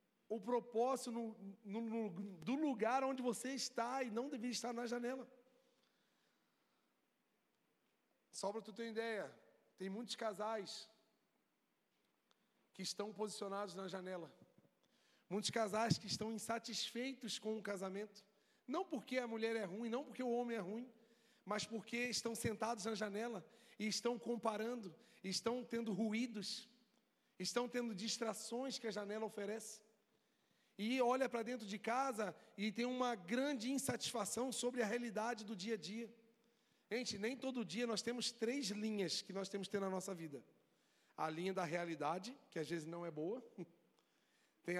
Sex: male